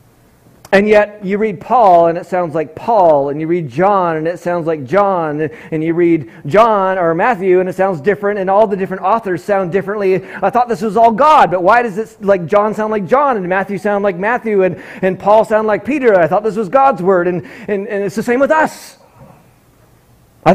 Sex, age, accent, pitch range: male, 30-49, American, 170-220 Hz